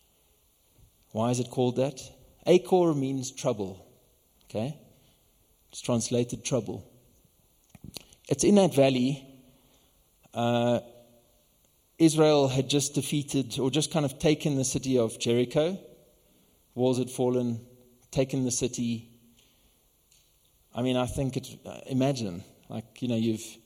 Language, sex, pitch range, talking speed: English, male, 115-135 Hz, 120 wpm